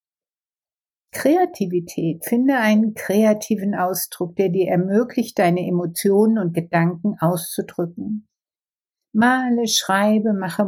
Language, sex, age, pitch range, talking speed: German, female, 60-79, 185-245 Hz, 90 wpm